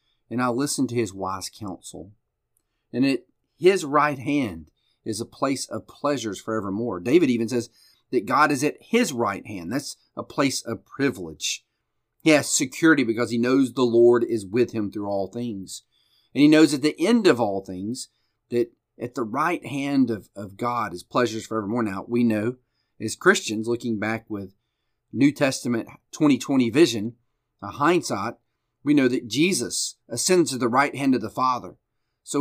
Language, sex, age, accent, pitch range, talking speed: English, male, 40-59, American, 110-140 Hz, 175 wpm